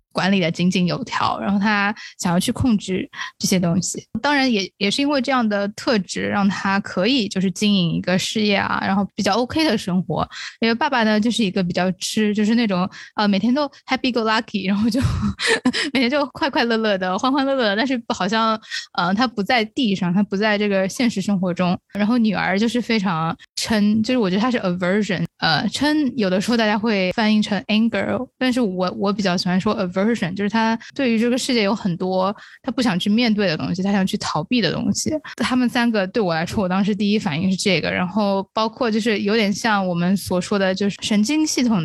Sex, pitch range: female, 190-230 Hz